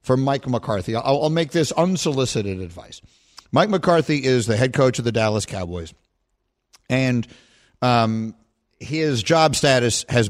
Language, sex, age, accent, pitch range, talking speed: English, male, 50-69, American, 115-155 Hz, 140 wpm